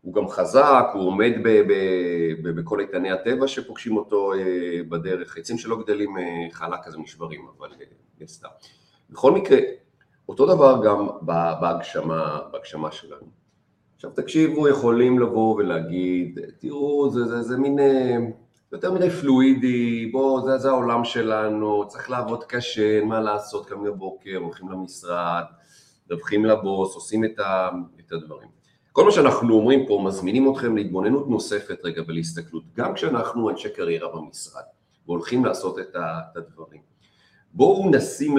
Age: 40-59